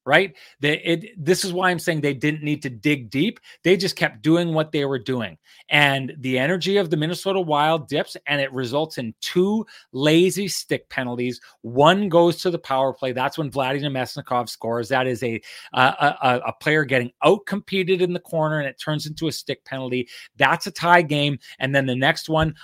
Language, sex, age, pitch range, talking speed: English, male, 30-49, 135-170 Hz, 195 wpm